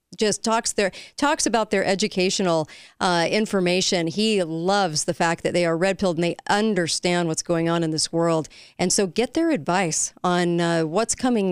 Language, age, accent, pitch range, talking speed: English, 40-59, American, 170-215 Hz, 190 wpm